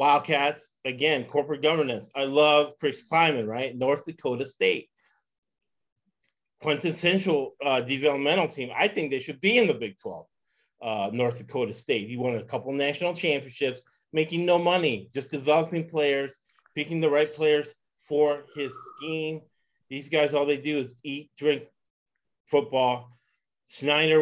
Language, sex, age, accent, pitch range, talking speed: English, male, 30-49, American, 125-150 Hz, 140 wpm